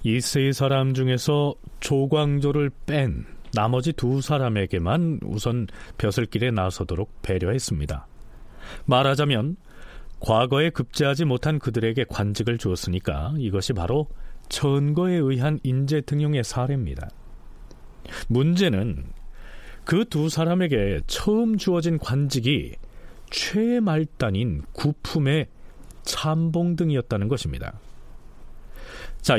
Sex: male